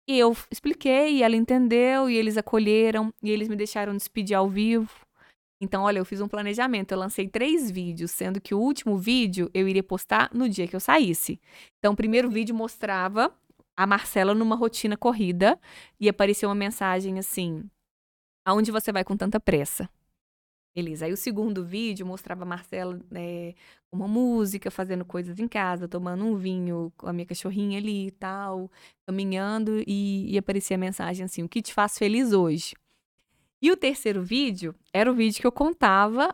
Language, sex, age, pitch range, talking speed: Portuguese, female, 20-39, 190-230 Hz, 180 wpm